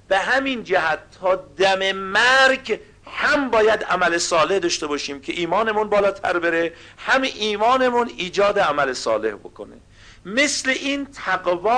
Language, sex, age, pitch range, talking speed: Persian, male, 50-69, 130-215 Hz, 125 wpm